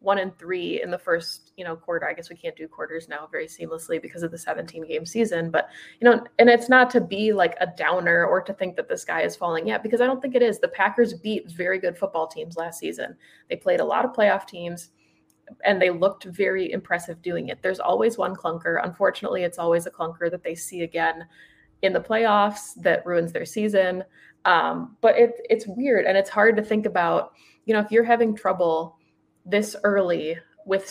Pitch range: 170-210 Hz